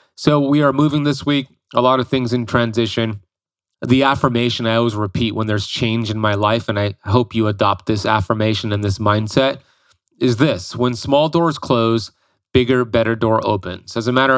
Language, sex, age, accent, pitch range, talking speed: English, male, 30-49, American, 105-125 Hz, 190 wpm